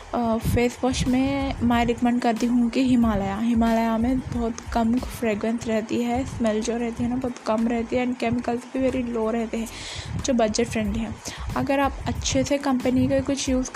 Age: 10-29